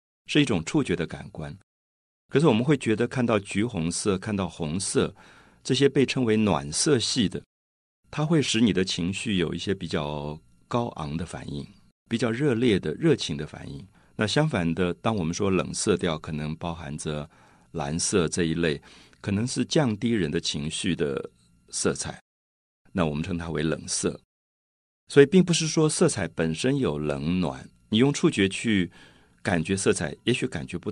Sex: male